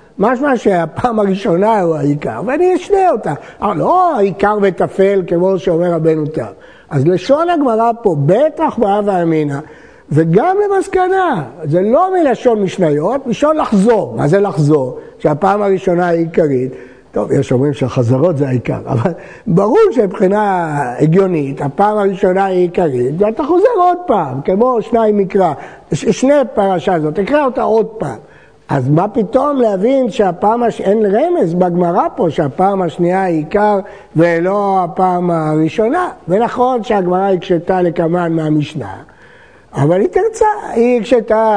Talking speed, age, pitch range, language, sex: 140 wpm, 60-79, 170-240 Hz, Hebrew, male